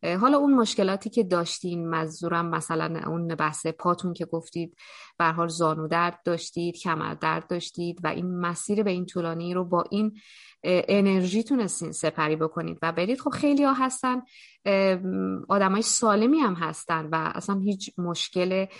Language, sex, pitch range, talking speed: Persian, female, 175-225 Hz, 145 wpm